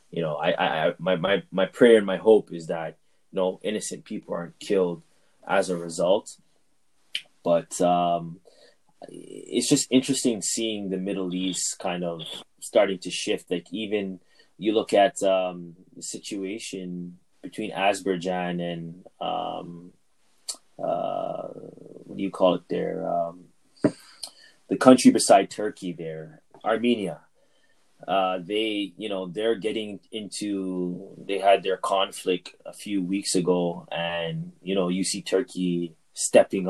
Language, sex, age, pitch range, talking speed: English, male, 20-39, 90-105 Hz, 140 wpm